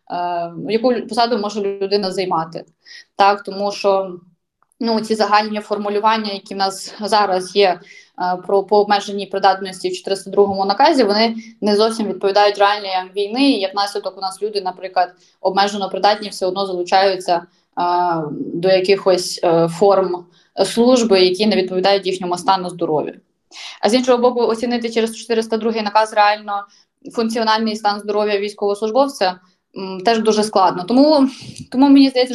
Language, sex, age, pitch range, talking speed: Ukrainian, female, 20-39, 195-225 Hz, 140 wpm